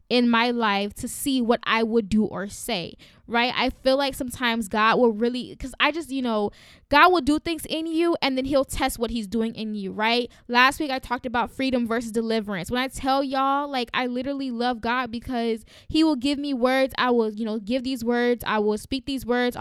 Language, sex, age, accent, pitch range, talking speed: English, female, 10-29, American, 225-270 Hz, 230 wpm